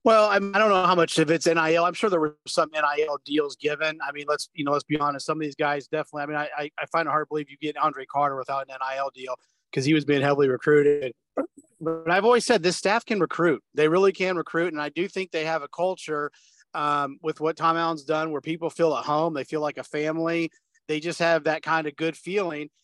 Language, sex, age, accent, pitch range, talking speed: English, male, 30-49, American, 155-180 Hz, 255 wpm